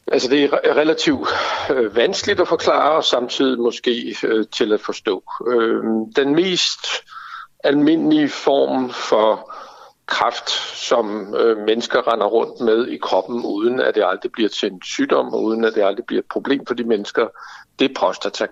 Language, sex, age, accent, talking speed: Danish, male, 60-79, native, 160 wpm